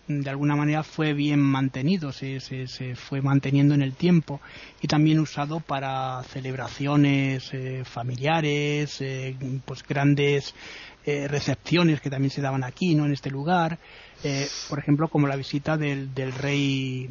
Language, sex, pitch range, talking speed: Spanish, male, 135-150 Hz, 155 wpm